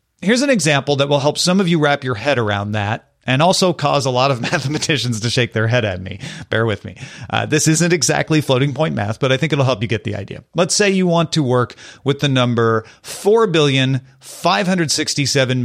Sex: male